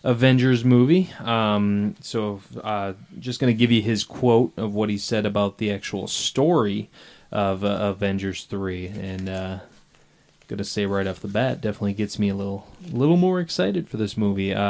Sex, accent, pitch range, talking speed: male, American, 100-125 Hz, 180 wpm